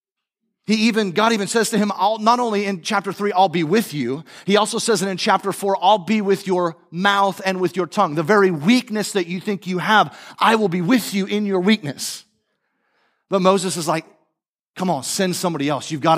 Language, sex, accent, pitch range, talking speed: English, male, American, 155-205 Hz, 225 wpm